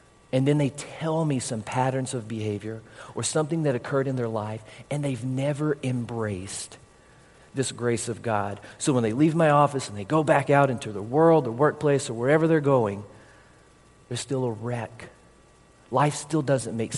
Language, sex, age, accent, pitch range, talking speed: English, male, 40-59, American, 115-145 Hz, 185 wpm